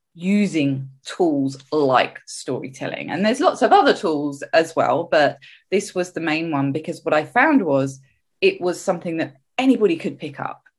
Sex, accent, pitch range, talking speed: female, British, 145-200 Hz, 170 wpm